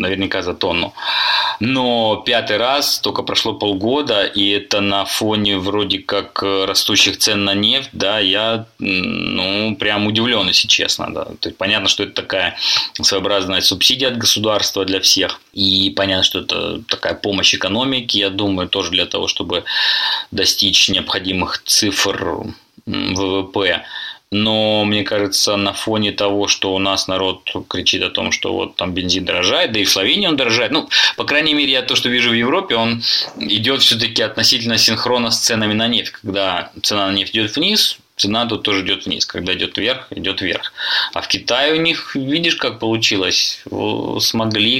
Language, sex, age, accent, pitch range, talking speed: Russian, male, 20-39, native, 100-115 Hz, 165 wpm